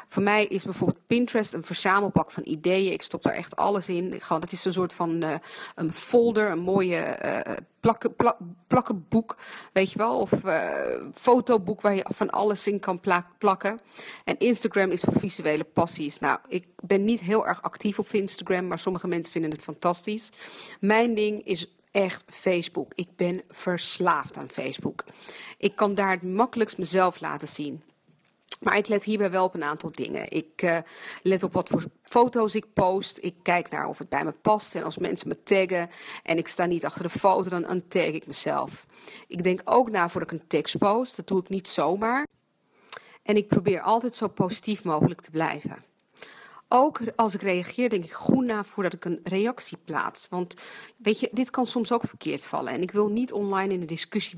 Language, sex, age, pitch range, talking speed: English, female, 40-59, 175-215 Hz, 195 wpm